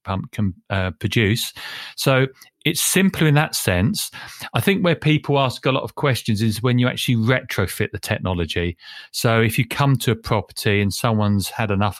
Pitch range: 100-120 Hz